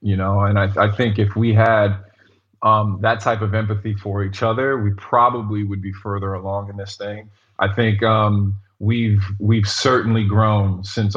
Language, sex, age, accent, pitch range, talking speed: English, male, 20-39, American, 100-110 Hz, 185 wpm